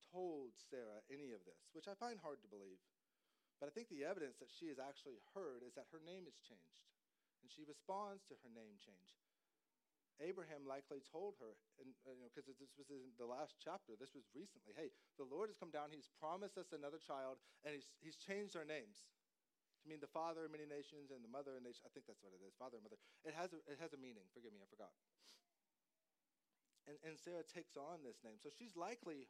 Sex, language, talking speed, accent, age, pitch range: male, English, 220 wpm, American, 30-49, 130-170 Hz